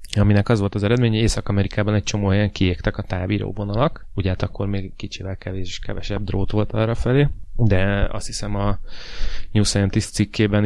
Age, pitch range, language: 20-39, 100-110 Hz, Hungarian